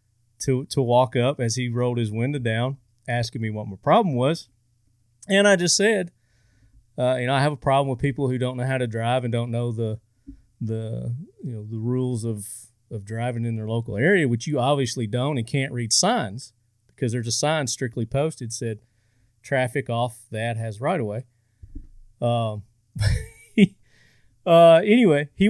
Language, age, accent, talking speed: English, 40-59, American, 180 wpm